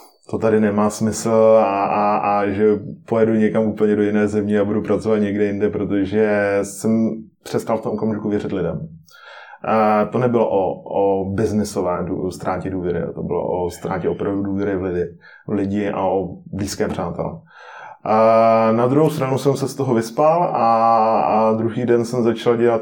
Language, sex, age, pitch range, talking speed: Czech, male, 20-39, 95-110 Hz, 170 wpm